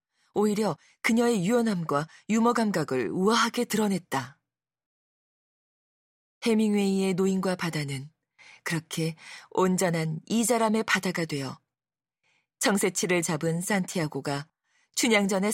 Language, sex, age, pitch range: Korean, female, 40-59, 160-215 Hz